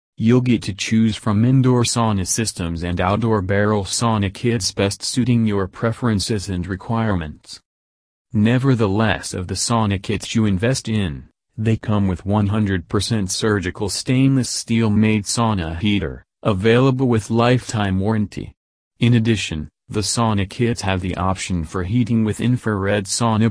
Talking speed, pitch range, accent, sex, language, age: 140 wpm, 95-115 Hz, American, male, English, 40-59